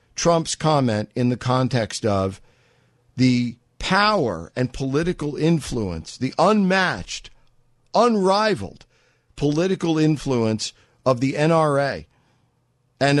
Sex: male